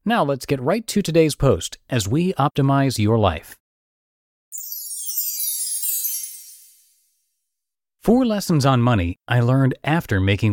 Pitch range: 105-150 Hz